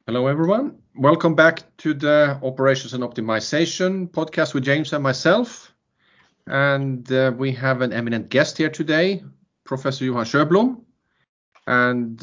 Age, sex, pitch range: 40-59, male, 120-150 Hz